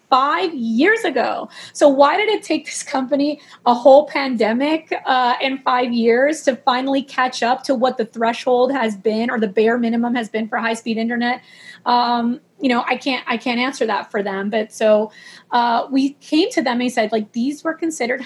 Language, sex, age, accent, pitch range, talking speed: English, female, 30-49, American, 225-275 Hz, 200 wpm